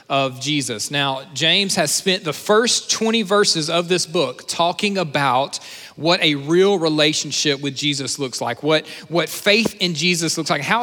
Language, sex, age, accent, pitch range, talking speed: English, male, 40-59, American, 150-185 Hz, 160 wpm